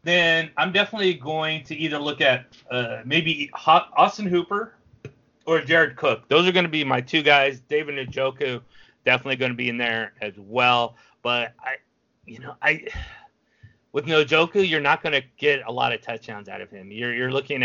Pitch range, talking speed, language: 115-150 Hz, 190 wpm, English